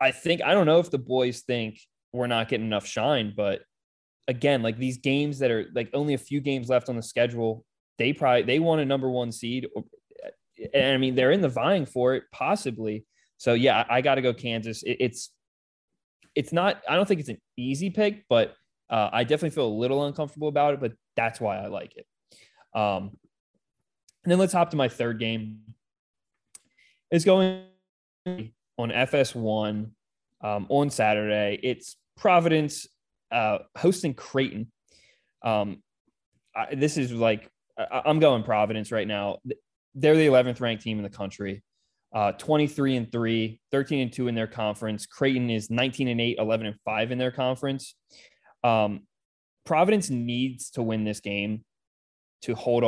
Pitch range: 110-140 Hz